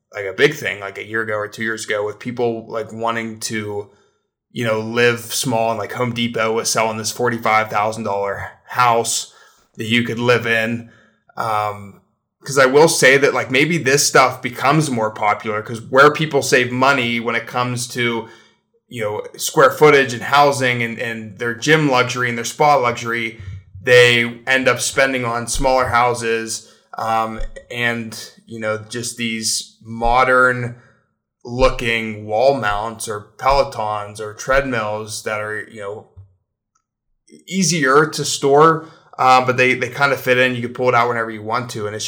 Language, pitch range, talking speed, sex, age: English, 110-130 Hz, 170 wpm, male, 20-39